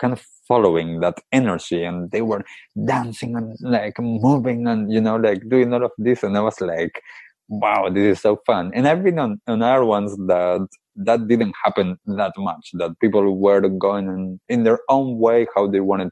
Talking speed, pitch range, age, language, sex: 200 wpm, 85-110 Hz, 20-39, English, male